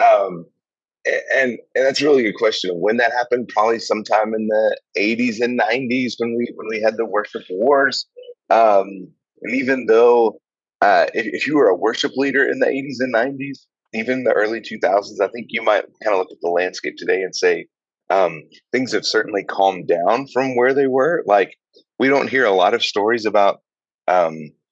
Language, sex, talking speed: English, male, 200 wpm